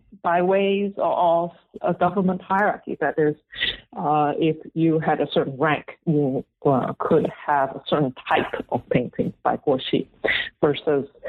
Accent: American